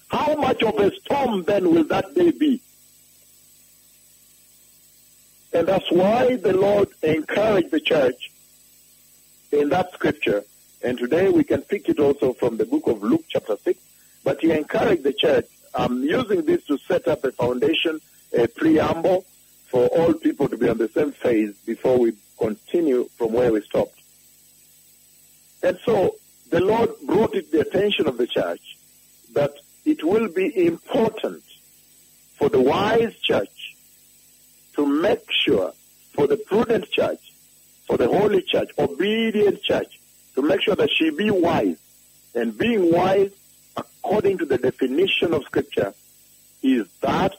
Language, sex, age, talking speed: English, male, 60-79, 150 wpm